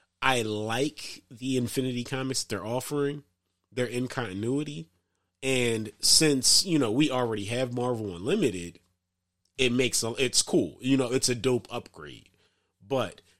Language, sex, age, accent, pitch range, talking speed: English, male, 30-49, American, 100-130 Hz, 140 wpm